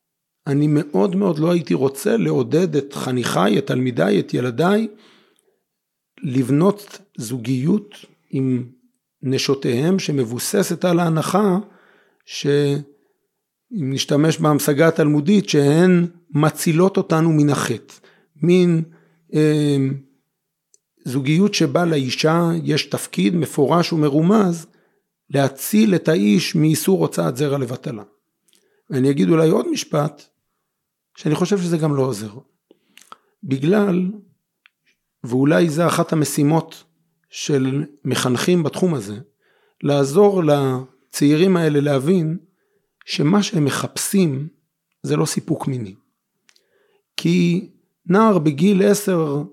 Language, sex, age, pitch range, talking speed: Hebrew, male, 50-69, 140-185 Hz, 95 wpm